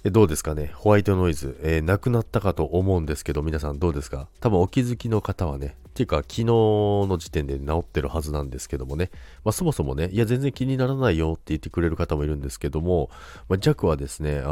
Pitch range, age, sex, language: 75-115 Hz, 40-59, male, Japanese